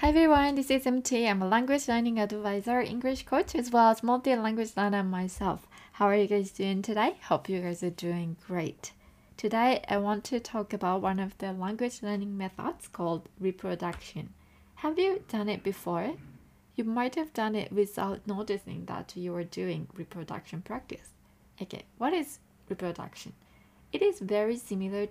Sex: female